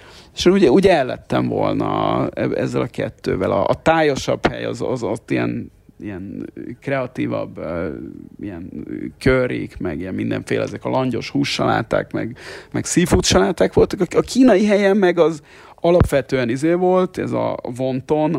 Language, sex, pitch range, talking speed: Hungarian, male, 120-170 Hz, 140 wpm